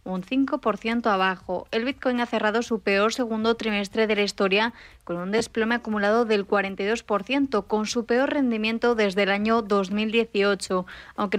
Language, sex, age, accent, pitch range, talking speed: Spanish, female, 20-39, Spanish, 205-230 Hz, 155 wpm